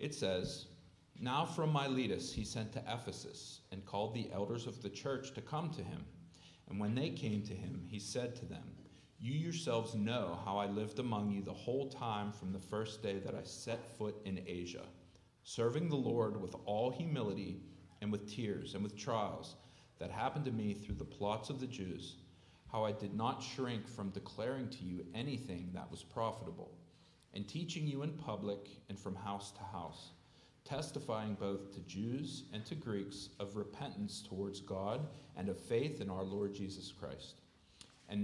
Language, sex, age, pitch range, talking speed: English, male, 40-59, 100-125 Hz, 180 wpm